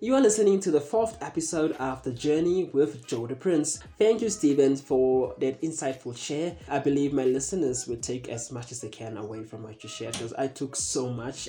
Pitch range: 125-170 Hz